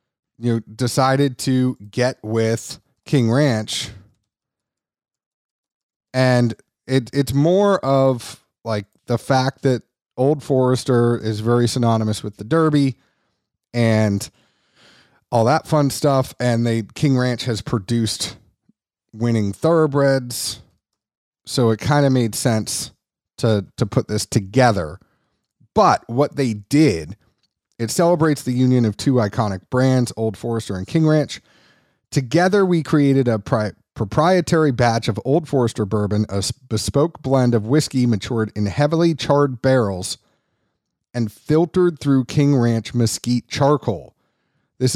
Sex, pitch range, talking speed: male, 110-140 Hz, 125 wpm